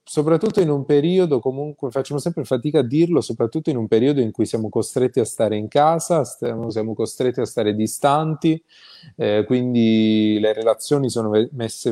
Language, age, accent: Italian, 20-39, native